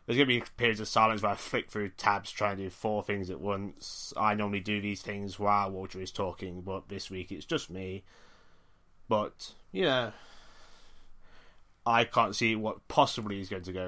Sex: male